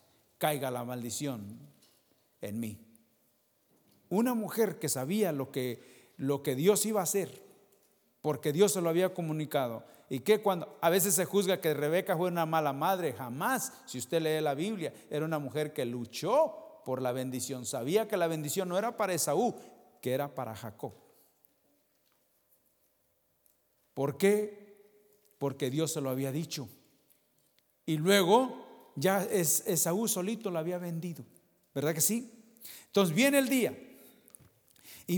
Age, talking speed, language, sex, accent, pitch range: 50-69, 145 wpm, English, male, Mexican, 135-195 Hz